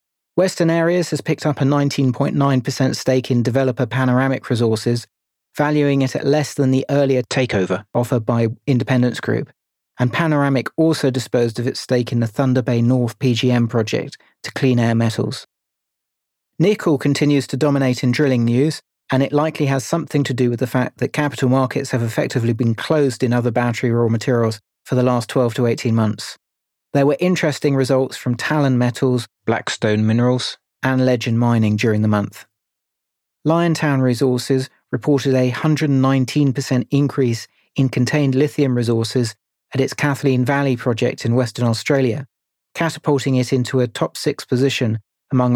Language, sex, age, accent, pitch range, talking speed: English, male, 40-59, British, 120-140 Hz, 155 wpm